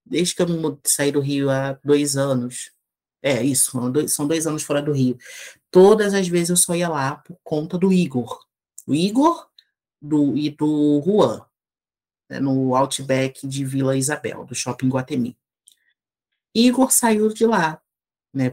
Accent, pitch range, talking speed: Brazilian, 145-215 Hz, 150 wpm